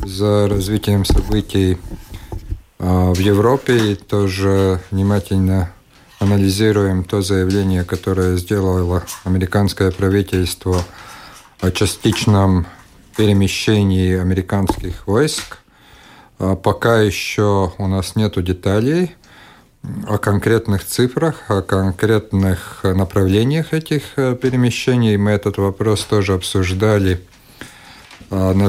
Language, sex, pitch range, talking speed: Russian, male, 95-110 Hz, 80 wpm